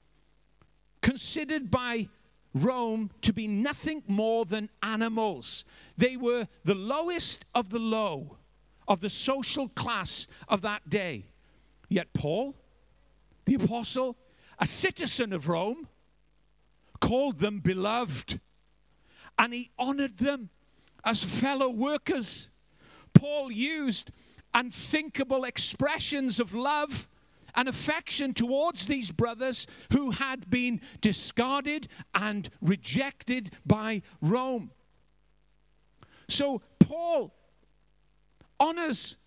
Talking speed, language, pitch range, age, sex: 95 wpm, English, 220-285 Hz, 50-69, male